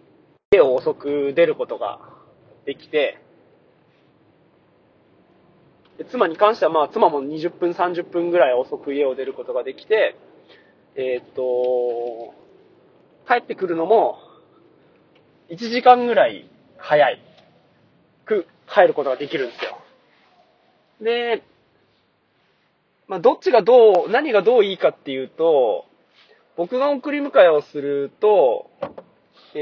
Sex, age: male, 20-39